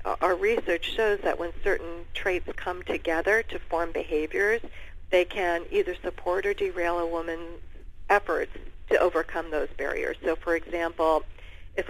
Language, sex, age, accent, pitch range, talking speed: English, female, 50-69, American, 160-195 Hz, 145 wpm